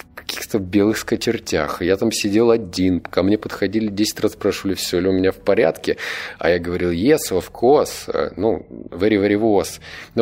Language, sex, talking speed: Russian, male, 165 wpm